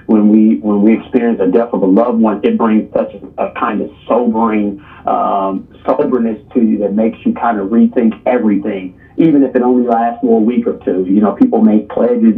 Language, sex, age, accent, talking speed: English, male, 40-59, American, 220 wpm